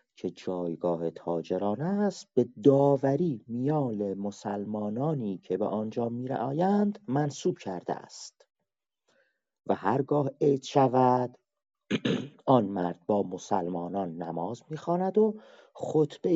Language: Persian